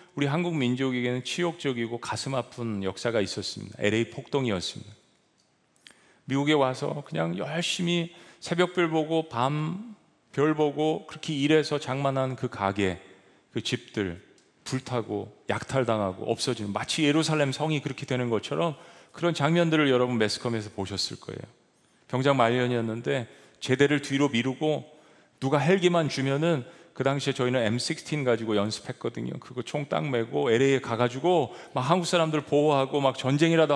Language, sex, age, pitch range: Korean, male, 40-59, 120-155 Hz